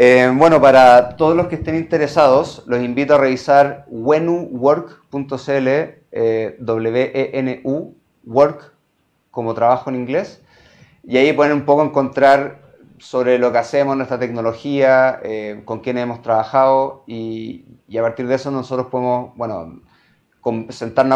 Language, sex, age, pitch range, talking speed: Spanish, male, 30-49, 125-140 Hz, 140 wpm